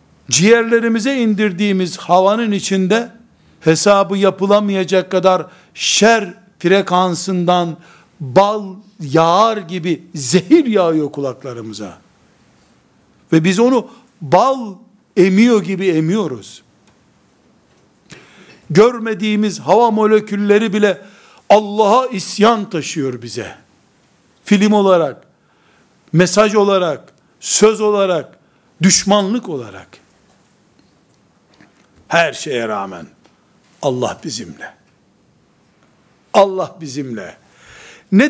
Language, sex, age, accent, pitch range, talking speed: Turkish, male, 60-79, native, 155-210 Hz, 70 wpm